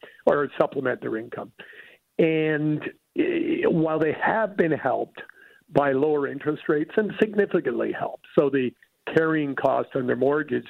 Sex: male